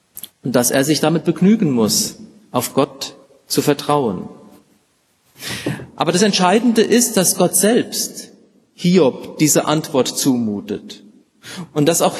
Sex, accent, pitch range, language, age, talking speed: male, German, 145-200 Hz, German, 40-59, 125 wpm